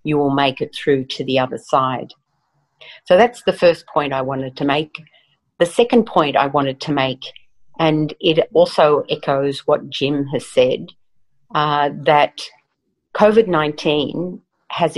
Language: English